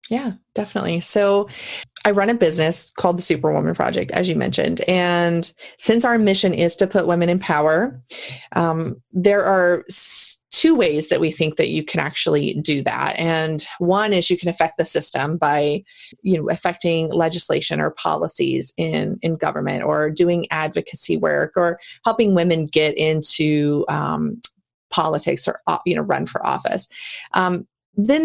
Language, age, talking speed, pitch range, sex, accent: English, 30-49, 160 wpm, 165-210 Hz, female, American